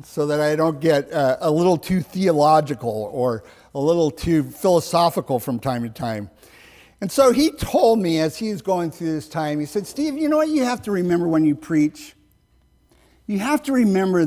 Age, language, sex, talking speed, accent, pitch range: 50-69, English, male, 200 wpm, American, 155-220 Hz